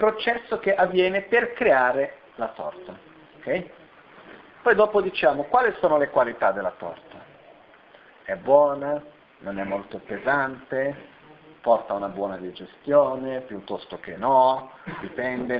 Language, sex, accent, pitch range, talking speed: Italian, male, native, 135-185 Hz, 115 wpm